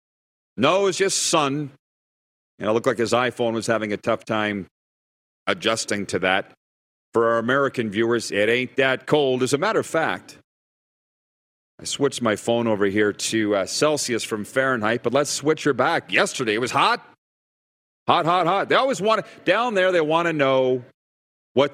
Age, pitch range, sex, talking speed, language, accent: 40-59, 115-150 Hz, male, 175 wpm, English, American